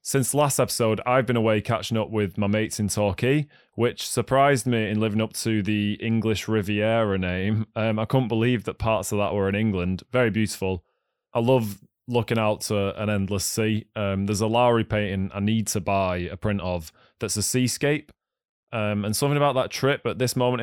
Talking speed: 200 wpm